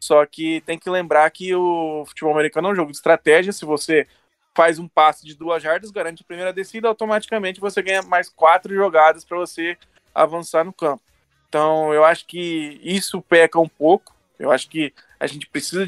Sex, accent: male, Brazilian